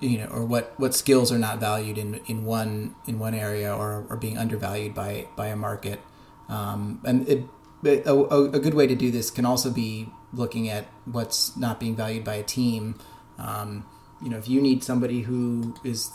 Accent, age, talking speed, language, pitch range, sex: American, 30-49, 205 wpm, English, 110-125 Hz, male